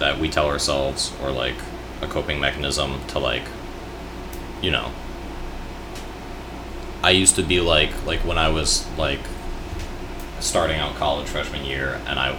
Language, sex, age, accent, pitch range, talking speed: English, male, 20-39, American, 65-80 Hz, 145 wpm